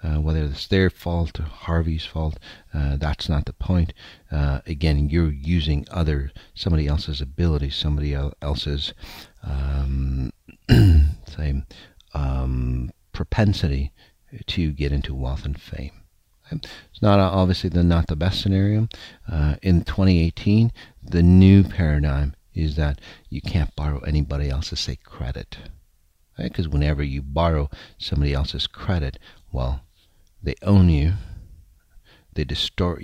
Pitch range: 70-90 Hz